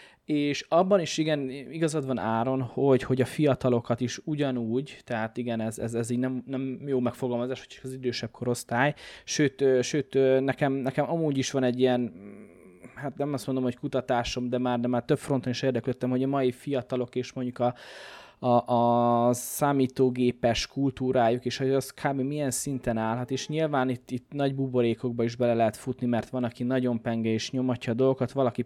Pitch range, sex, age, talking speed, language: 120-140 Hz, male, 20-39, 185 wpm, Hungarian